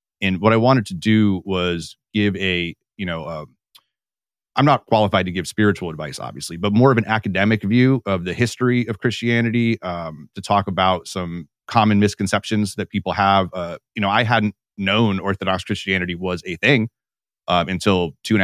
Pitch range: 90-105 Hz